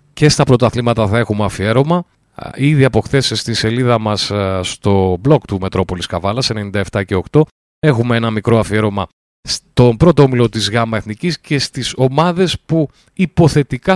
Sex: male